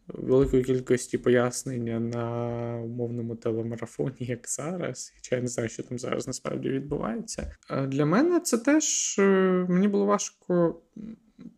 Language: Ukrainian